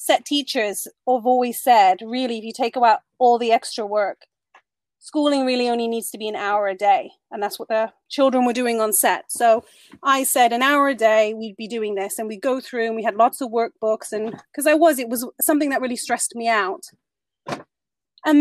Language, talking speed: English, 220 wpm